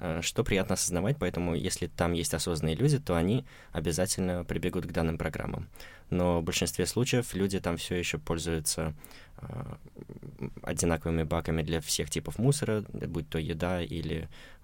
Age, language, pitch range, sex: 20-39, Russian, 85-95 Hz, male